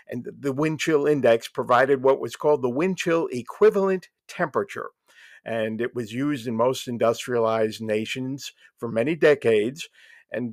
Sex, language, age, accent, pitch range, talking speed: male, English, 50-69, American, 115-150 Hz, 150 wpm